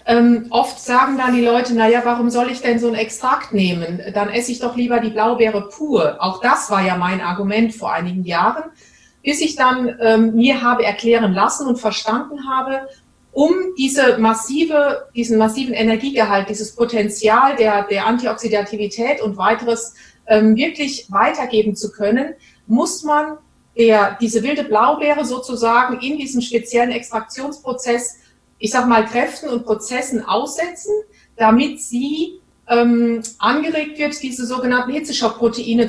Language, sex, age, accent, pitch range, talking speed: German, female, 30-49, German, 215-265 Hz, 145 wpm